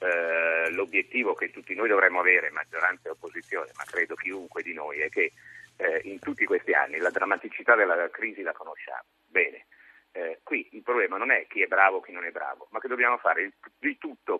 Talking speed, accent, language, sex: 190 wpm, native, Italian, male